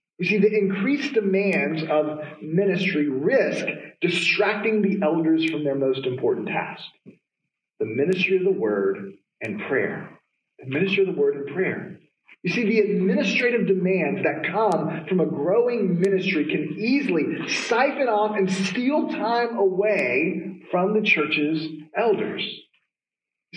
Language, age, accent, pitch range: English, 40-59, American, 180-230 Hz